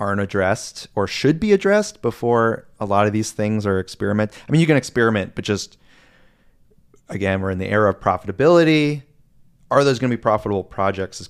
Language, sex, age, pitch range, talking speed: English, male, 30-49, 100-125 Hz, 190 wpm